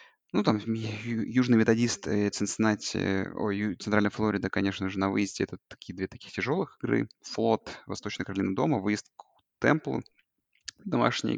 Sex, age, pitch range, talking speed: male, 20-39, 105-130 Hz, 135 wpm